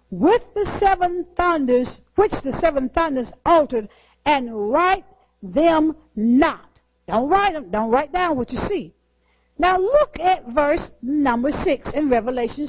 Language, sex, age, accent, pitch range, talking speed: English, female, 60-79, American, 260-375 Hz, 140 wpm